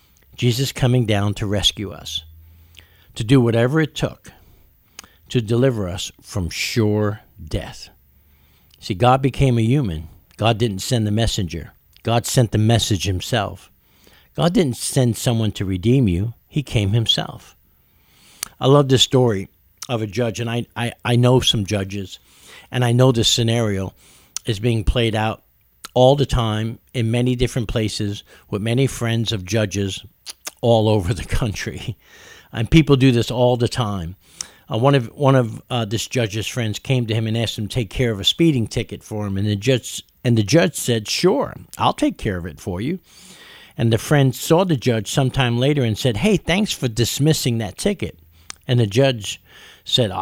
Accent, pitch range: American, 100-125 Hz